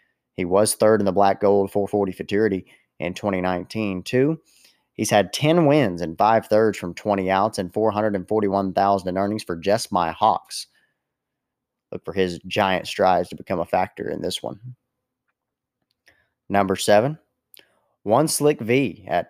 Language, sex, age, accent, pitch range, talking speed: English, male, 30-49, American, 95-115 Hz, 150 wpm